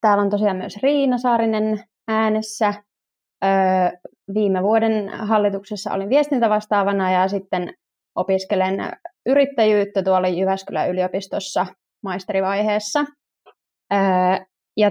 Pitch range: 185-220 Hz